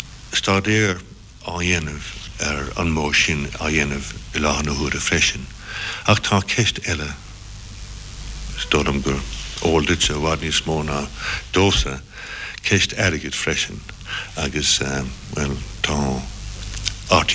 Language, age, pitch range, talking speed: English, 60-79, 75-100 Hz, 75 wpm